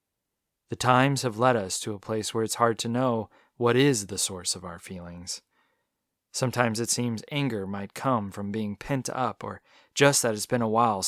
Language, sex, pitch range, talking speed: English, male, 100-130 Hz, 200 wpm